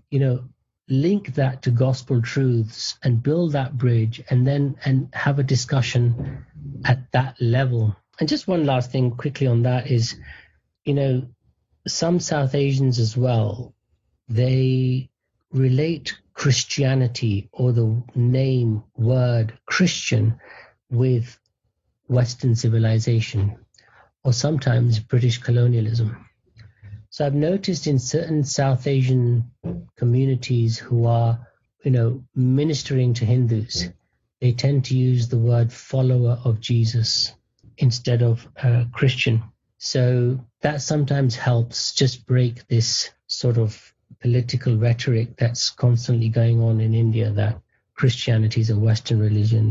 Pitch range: 115-130 Hz